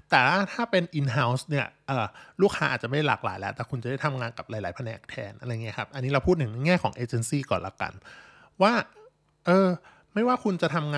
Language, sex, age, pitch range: Thai, male, 20-39, 130-155 Hz